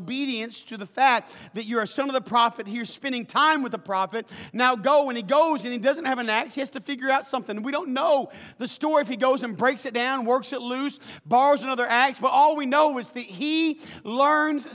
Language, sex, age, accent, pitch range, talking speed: English, male, 40-59, American, 255-315 Hz, 245 wpm